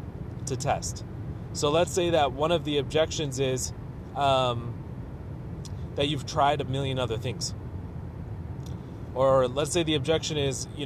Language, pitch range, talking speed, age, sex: German, 110-150 Hz, 145 wpm, 20-39, male